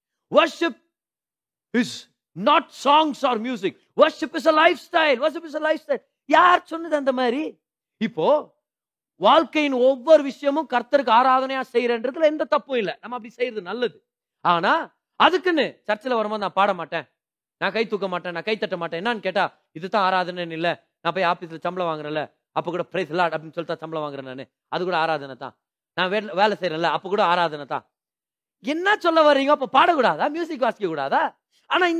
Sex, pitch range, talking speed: male, 195-305 Hz, 165 wpm